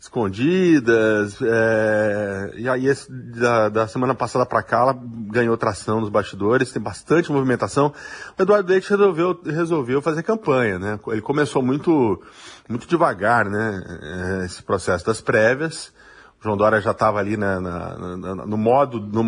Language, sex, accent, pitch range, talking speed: Portuguese, male, Brazilian, 105-140 Hz, 155 wpm